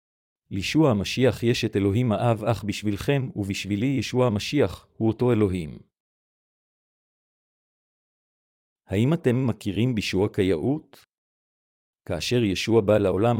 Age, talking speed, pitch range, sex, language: 50-69, 105 wpm, 100-125 Hz, male, Hebrew